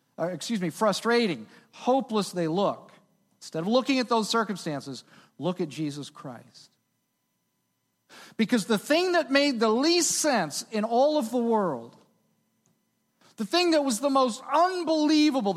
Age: 40-59